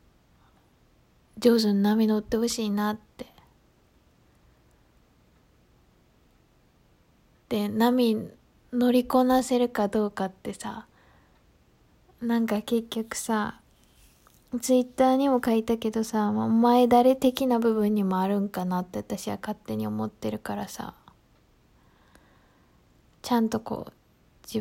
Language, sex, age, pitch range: Japanese, female, 20-39, 195-240 Hz